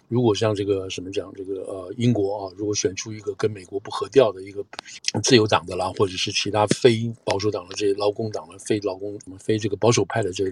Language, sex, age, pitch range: Chinese, male, 50-69, 100-125 Hz